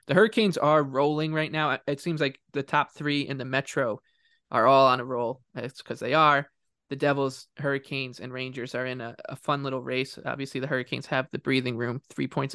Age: 20-39